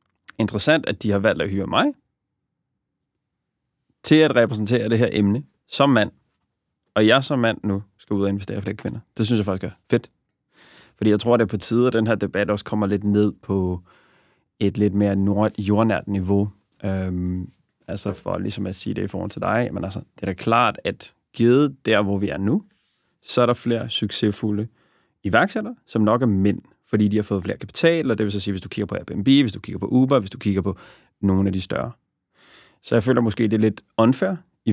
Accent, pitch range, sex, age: native, 100-115 Hz, male, 30-49